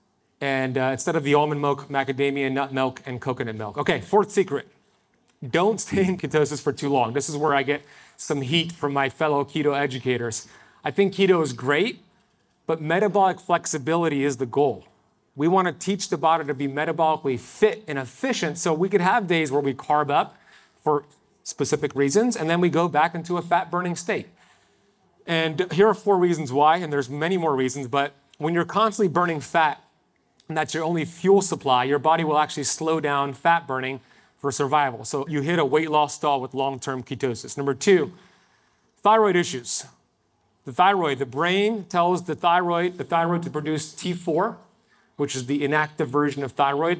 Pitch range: 140-175 Hz